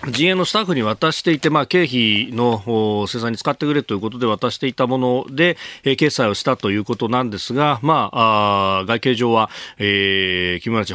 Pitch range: 100-140 Hz